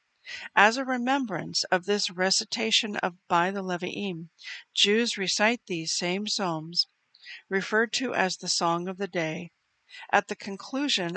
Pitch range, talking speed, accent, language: 180-230 Hz, 140 wpm, American, English